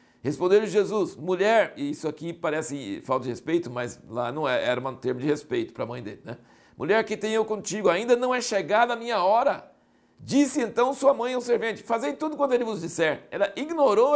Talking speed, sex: 205 wpm, male